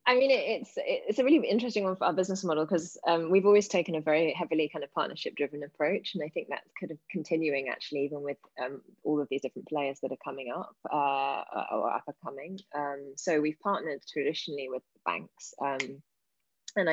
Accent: British